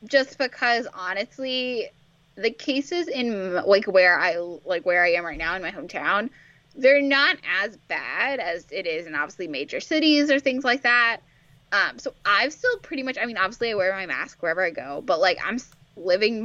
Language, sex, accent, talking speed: English, female, American, 195 wpm